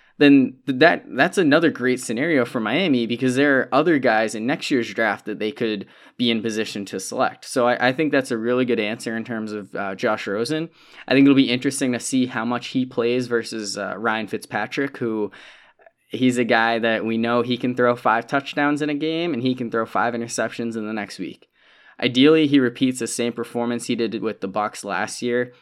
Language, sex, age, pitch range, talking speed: English, male, 20-39, 105-125 Hz, 220 wpm